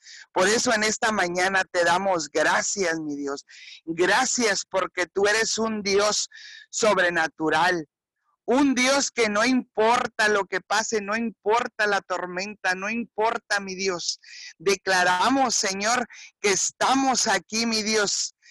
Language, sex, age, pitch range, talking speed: Spanish, male, 50-69, 180-230 Hz, 130 wpm